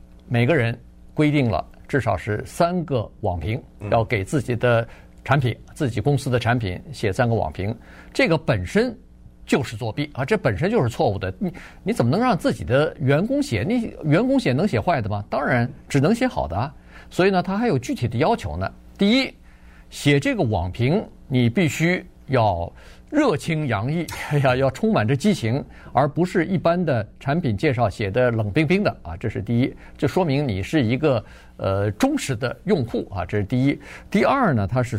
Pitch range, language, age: 105-160 Hz, Chinese, 50-69